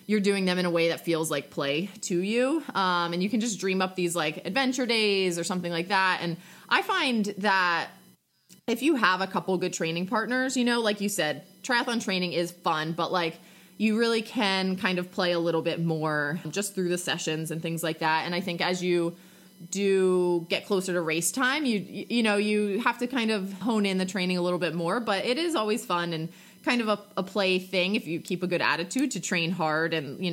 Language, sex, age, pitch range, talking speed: English, female, 20-39, 170-210 Hz, 235 wpm